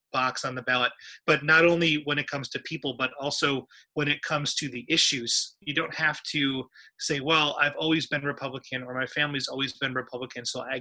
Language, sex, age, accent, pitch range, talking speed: English, male, 30-49, American, 130-155 Hz, 210 wpm